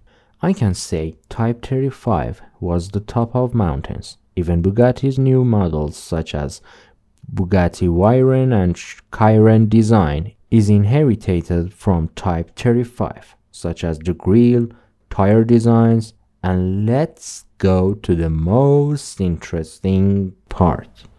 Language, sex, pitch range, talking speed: Persian, male, 90-120 Hz, 115 wpm